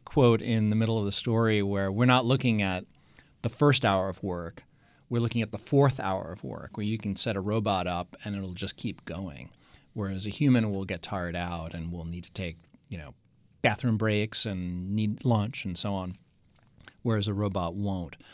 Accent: American